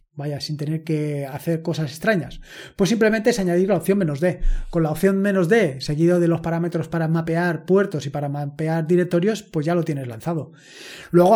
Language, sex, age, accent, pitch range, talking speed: Spanish, male, 20-39, Spanish, 160-195 Hz, 185 wpm